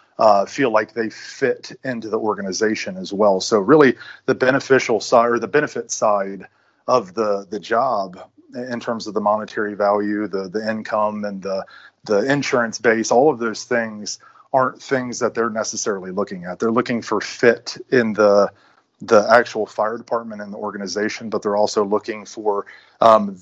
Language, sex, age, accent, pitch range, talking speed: English, male, 30-49, American, 105-115 Hz, 170 wpm